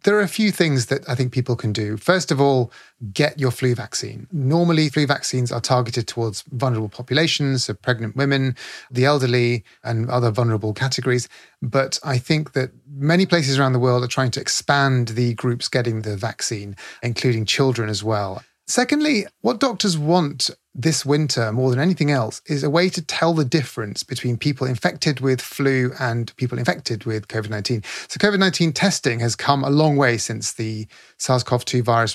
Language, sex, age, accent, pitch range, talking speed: English, male, 30-49, British, 120-150 Hz, 180 wpm